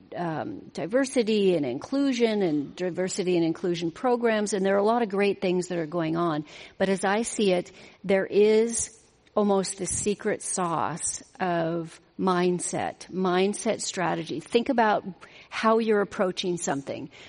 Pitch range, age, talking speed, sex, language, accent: 180-205 Hz, 40-59, 145 wpm, female, English, American